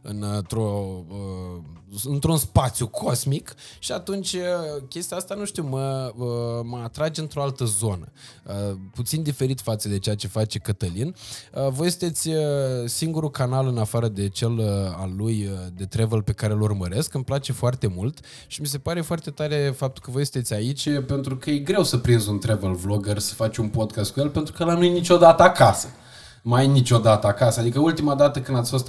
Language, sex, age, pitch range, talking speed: Romanian, male, 20-39, 105-140 Hz, 175 wpm